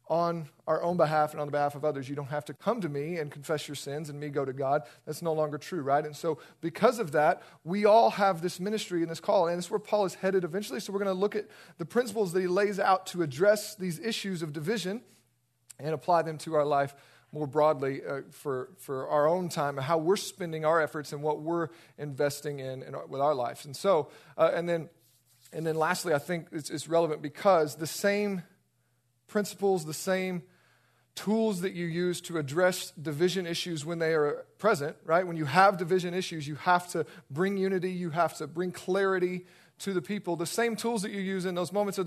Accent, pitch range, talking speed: American, 150-185 Hz, 225 wpm